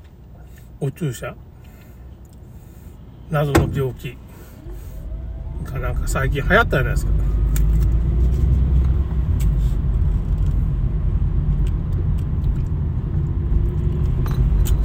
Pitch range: 70-80 Hz